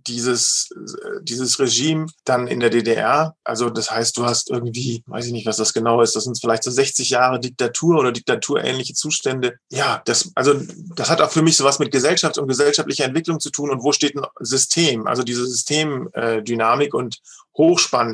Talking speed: 185 wpm